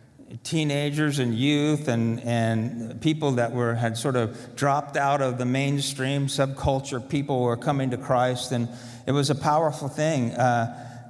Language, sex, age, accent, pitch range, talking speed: English, male, 50-69, American, 130-155 Hz, 155 wpm